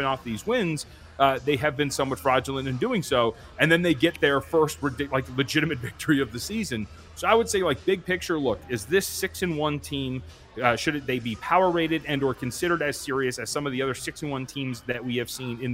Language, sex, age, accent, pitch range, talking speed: English, male, 30-49, American, 130-170 Hz, 240 wpm